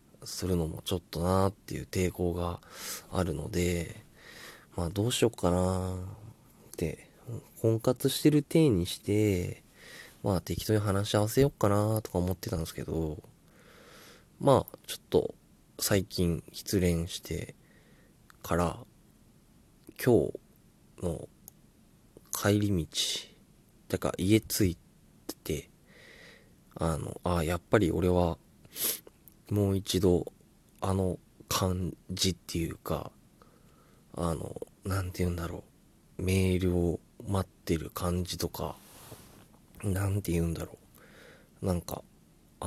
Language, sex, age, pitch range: Japanese, male, 20-39, 85-105 Hz